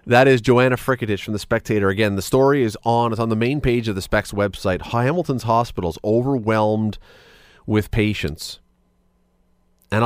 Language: English